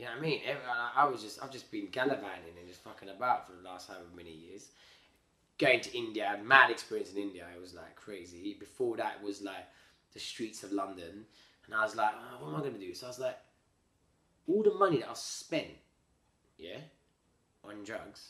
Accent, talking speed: British, 205 wpm